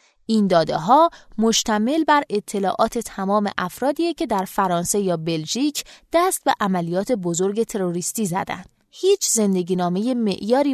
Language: Persian